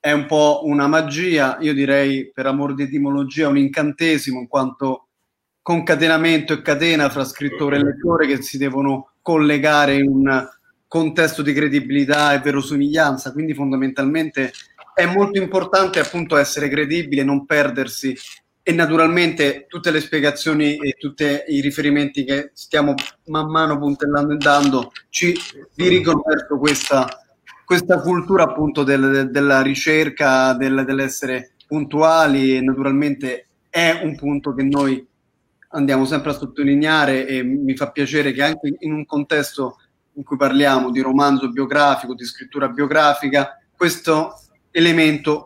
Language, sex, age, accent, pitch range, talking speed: Italian, male, 30-49, native, 140-160 Hz, 130 wpm